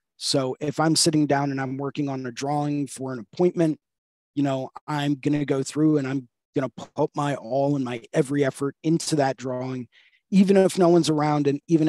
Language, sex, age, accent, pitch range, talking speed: English, male, 30-49, American, 125-145 Hz, 210 wpm